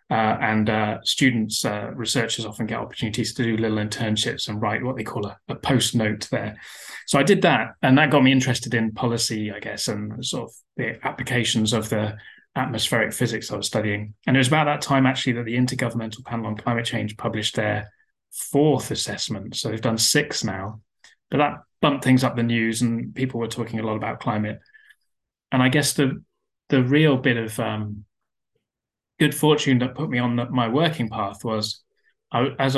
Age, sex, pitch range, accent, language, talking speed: 20-39, male, 110-130 Hz, British, English, 190 wpm